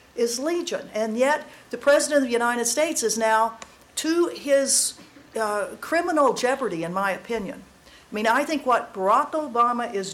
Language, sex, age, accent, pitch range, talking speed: English, female, 50-69, American, 210-275 Hz, 165 wpm